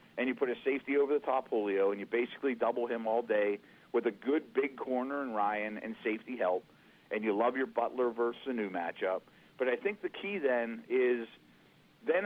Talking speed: 210 wpm